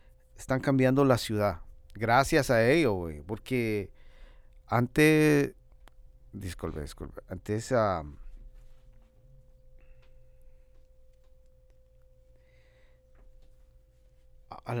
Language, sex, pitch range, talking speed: English, male, 85-120 Hz, 55 wpm